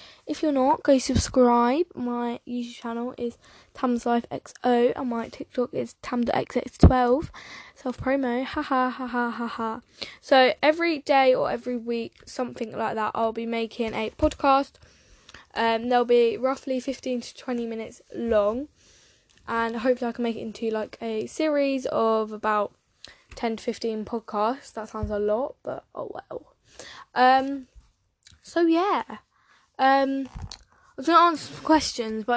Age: 10-29